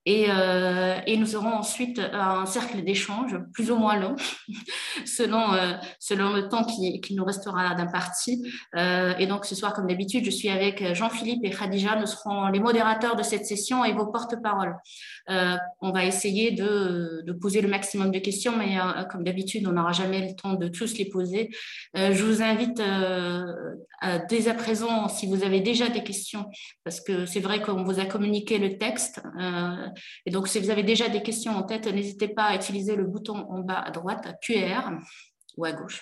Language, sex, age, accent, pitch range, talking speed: French, female, 20-39, French, 185-220 Hz, 200 wpm